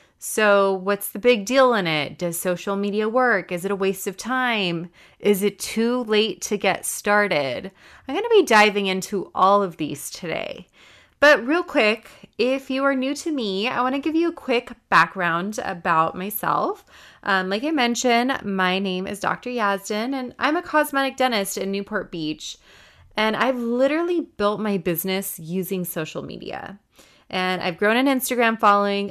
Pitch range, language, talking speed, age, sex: 190-240 Hz, English, 175 wpm, 20-39, female